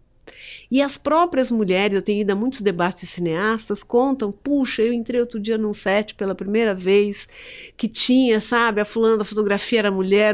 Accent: Brazilian